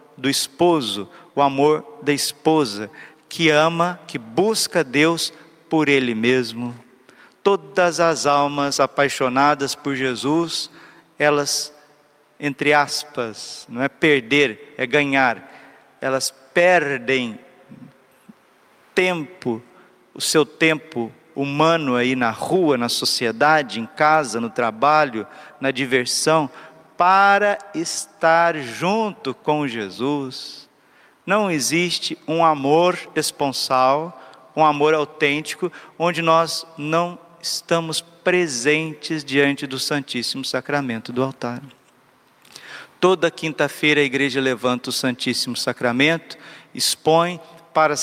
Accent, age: Brazilian, 50-69